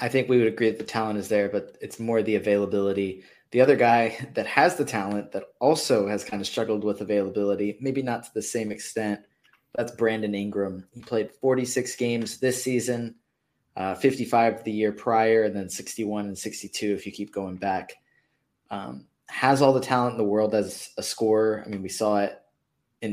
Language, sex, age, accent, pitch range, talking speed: English, male, 20-39, American, 100-115 Hz, 200 wpm